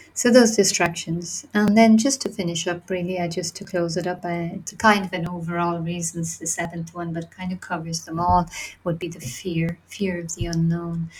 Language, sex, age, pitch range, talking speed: English, female, 30-49, 165-190 Hz, 205 wpm